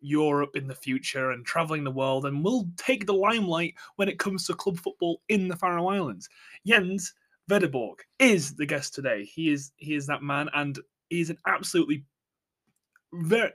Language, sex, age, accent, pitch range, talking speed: English, male, 20-39, British, 145-185 Hz, 180 wpm